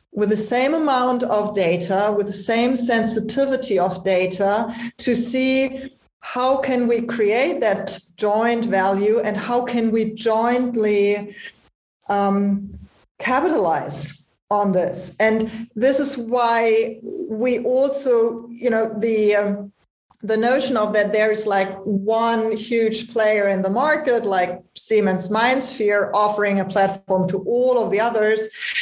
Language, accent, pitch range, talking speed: English, German, 205-245 Hz, 135 wpm